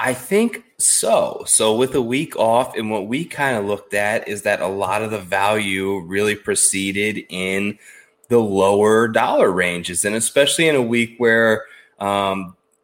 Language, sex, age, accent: English, male, 20-39, American